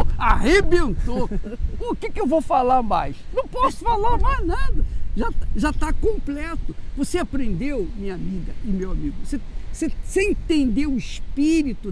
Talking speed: 150 wpm